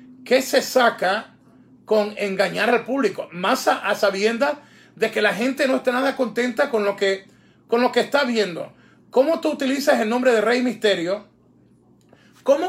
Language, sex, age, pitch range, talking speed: Spanish, male, 30-49, 195-250 Hz, 170 wpm